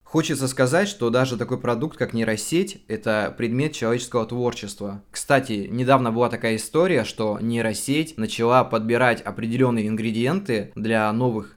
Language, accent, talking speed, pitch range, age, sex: Russian, native, 130 wpm, 105-125 Hz, 20-39, male